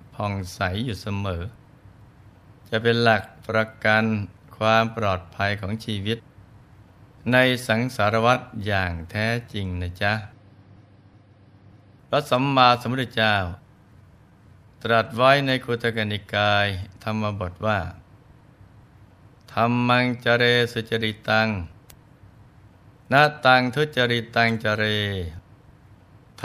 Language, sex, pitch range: Thai, male, 105-125 Hz